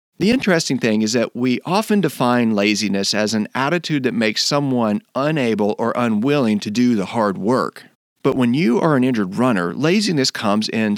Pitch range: 115-155 Hz